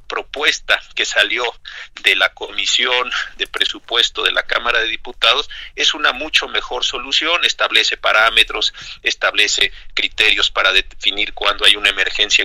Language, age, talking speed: Spanish, 50-69, 135 wpm